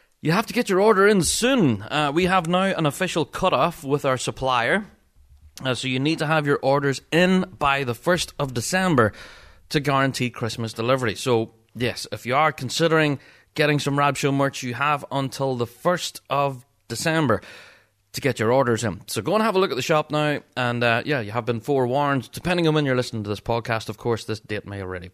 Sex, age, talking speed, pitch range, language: male, 30-49, 215 wpm, 125-170 Hz, English